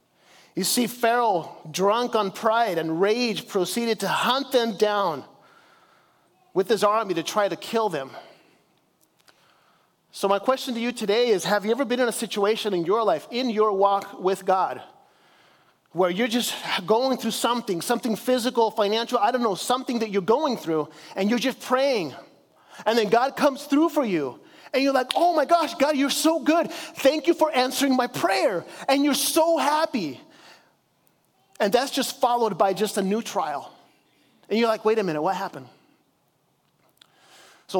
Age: 30-49